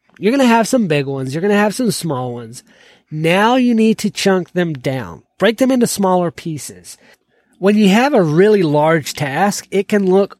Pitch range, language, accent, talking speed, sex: 145-205 Hz, English, American, 210 wpm, male